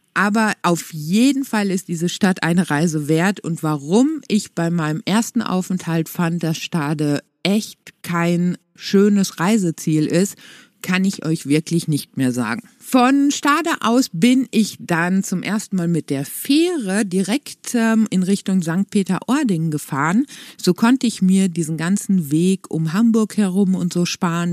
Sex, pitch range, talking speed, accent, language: female, 165-225 Hz, 155 wpm, German, German